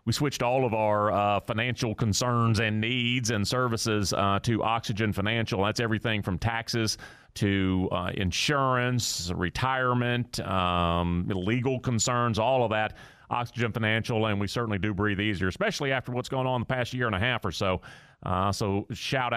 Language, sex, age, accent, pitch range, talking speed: English, male, 30-49, American, 100-130 Hz, 165 wpm